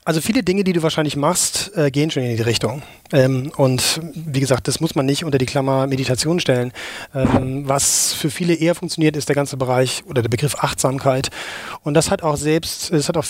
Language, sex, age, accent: German, male, 30-49, German